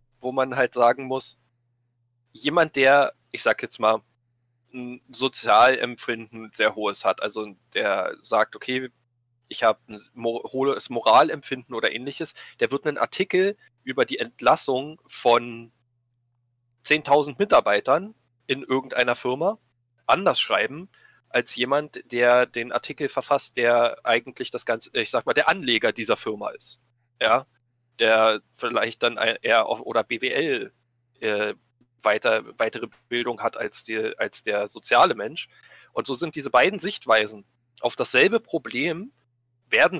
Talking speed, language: 135 wpm, German